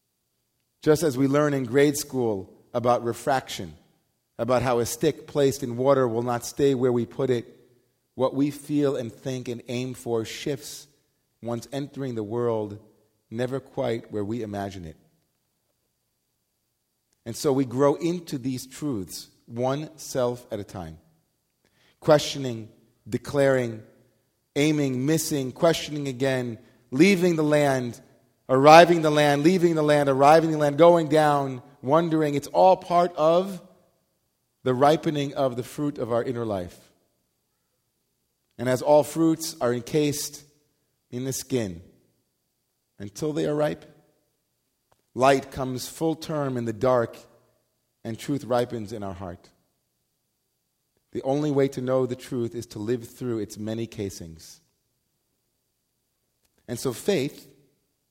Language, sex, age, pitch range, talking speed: English, male, 40-59, 120-145 Hz, 135 wpm